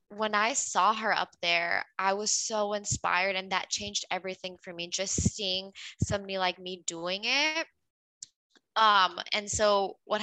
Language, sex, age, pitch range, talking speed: English, female, 20-39, 175-205 Hz, 160 wpm